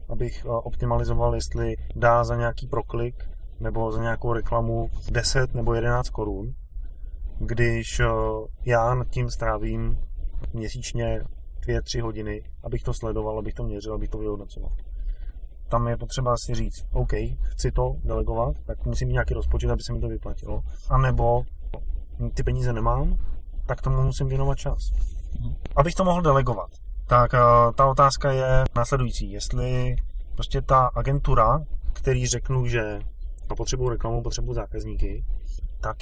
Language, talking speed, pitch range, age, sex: Czech, 135 wpm, 100-120 Hz, 20-39, male